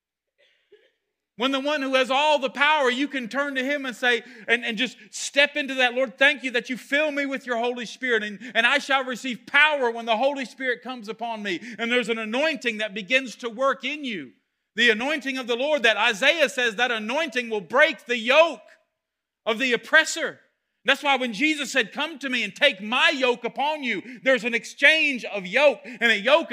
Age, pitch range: 40-59, 225-280 Hz